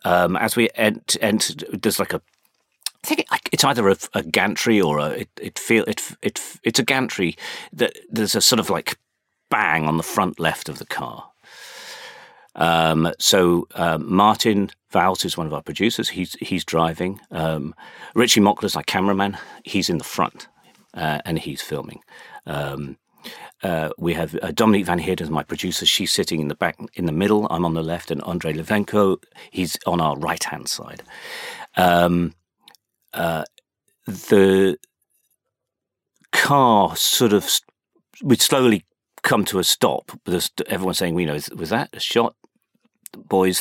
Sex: male